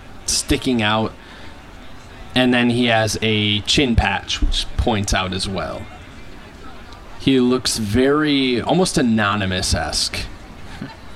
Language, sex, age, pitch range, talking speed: English, male, 20-39, 95-125 Hz, 100 wpm